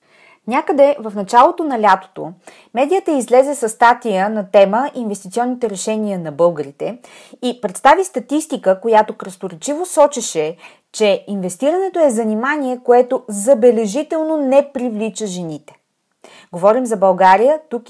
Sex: female